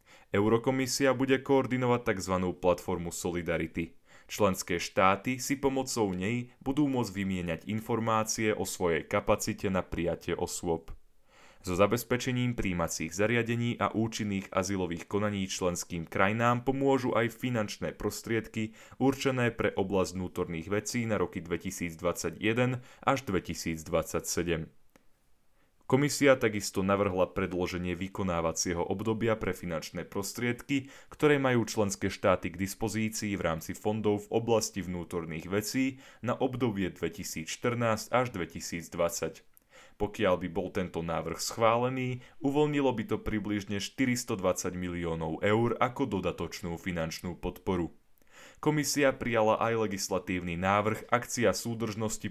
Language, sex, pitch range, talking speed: Slovak, male, 90-120 Hz, 110 wpm